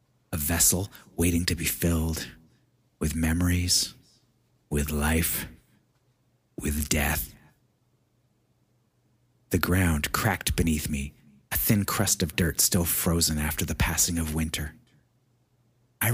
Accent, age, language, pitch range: American, 30-49, English, 80-110 Hz